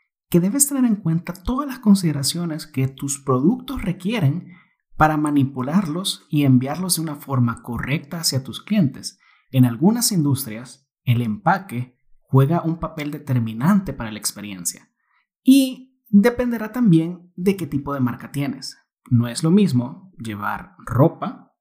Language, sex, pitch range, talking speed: Spanish, male, 130-195 Hz, 140 wpm